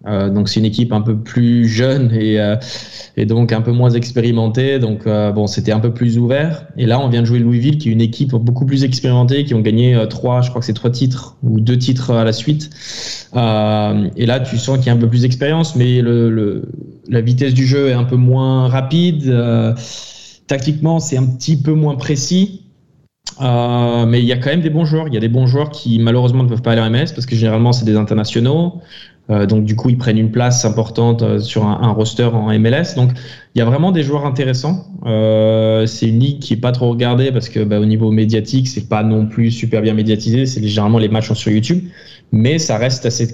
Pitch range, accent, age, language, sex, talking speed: 110-130 Hz, French, 20-39, French, male, 240 wpm